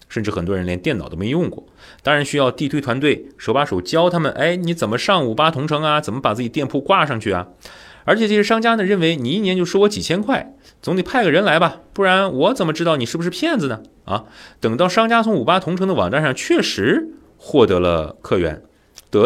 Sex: male